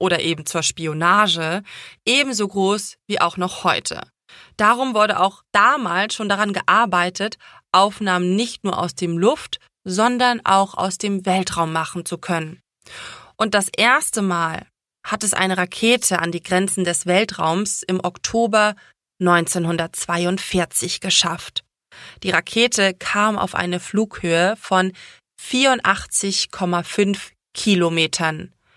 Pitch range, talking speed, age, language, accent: 175-205 Hz, 120 wpm, 20-39, German, German